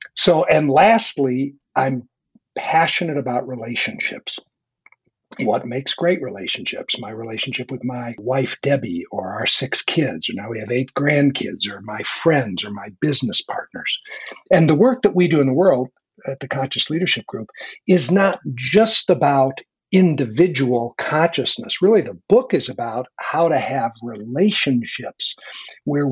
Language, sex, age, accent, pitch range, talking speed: English, male, 60-79, American, 125-165 Hz, 145 wpm